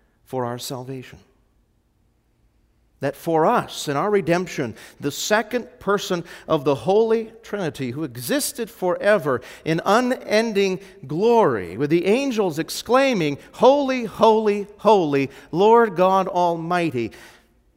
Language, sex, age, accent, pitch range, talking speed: English, male, 50-69, American, 135-210 Hz, 110 wpm